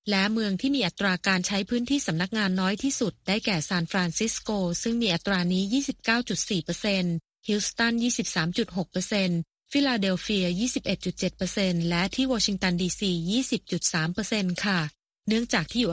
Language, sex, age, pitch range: Thai, female, 20-39, 180-230 Hz